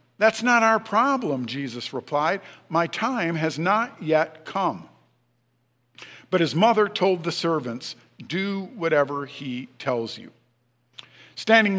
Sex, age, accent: male, 50-69, American